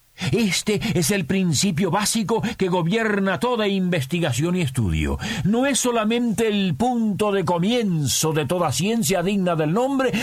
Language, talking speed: Spanish, 140 wpm